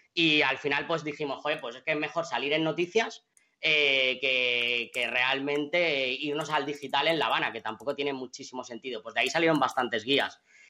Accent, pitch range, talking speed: Spanish, 145-185 Hz, 195 wpm